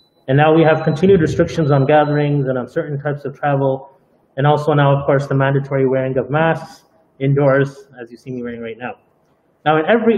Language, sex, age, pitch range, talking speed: English, male, 30-49, 150-195 Hz, 205 wpm